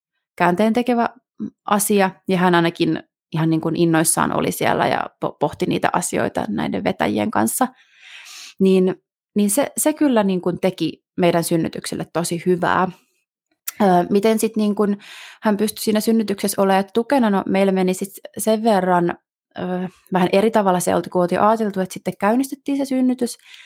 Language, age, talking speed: Finnish, 30-49, 155 wpm